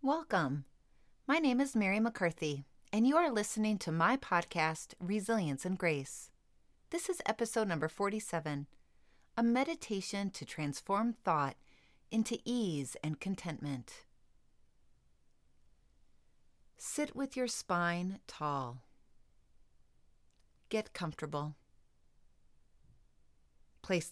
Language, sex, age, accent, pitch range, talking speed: English, female, 40-59, American, 135-215 Hz, 95 wpm